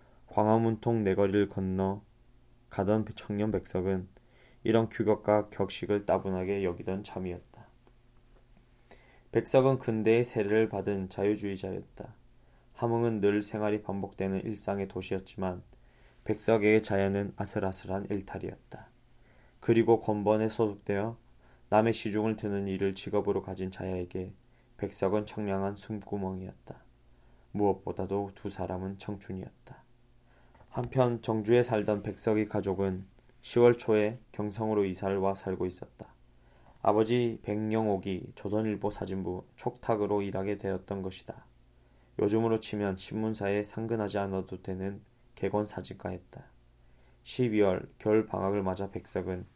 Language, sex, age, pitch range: Korean, male, 20-39, 95-115 Hz